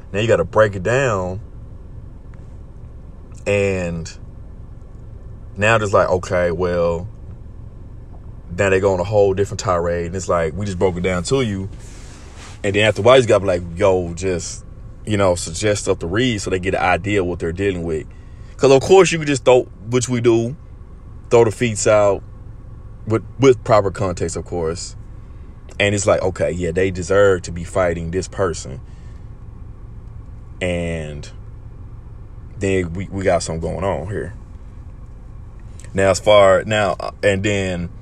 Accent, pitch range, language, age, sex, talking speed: American, 90-110 Hz, English, 20-39, male, 165 wpm